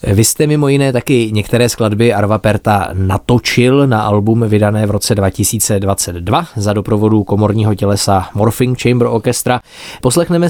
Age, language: 20-39, Czech